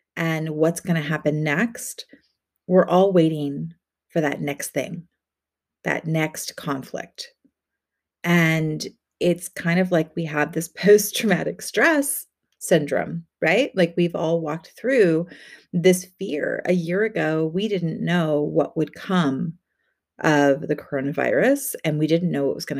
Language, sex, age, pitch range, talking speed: English, female, 30-49, 150-180 Hz, 140 wpm